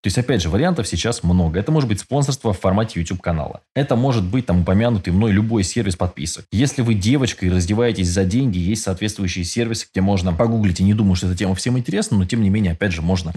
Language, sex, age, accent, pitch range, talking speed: Russian, male, 20-39, native, 90-115 Hz, 235 wpm